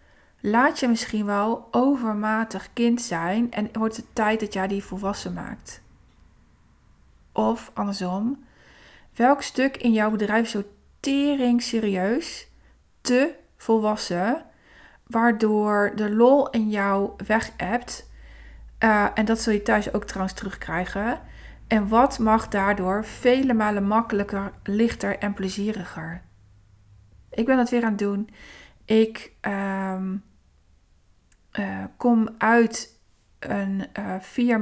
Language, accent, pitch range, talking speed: Dutch, Dutch, 195-235 Hz, 120 wpm